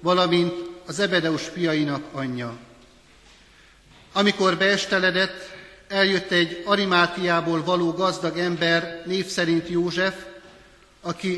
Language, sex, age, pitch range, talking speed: Hungarian, male, 60-79, 155-185 Hz, 90 wpm